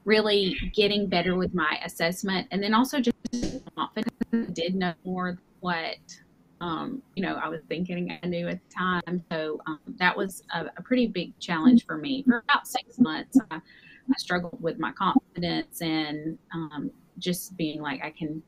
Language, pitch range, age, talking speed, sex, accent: English, 160-200 Hz, 30-49, 170 wpm, female, American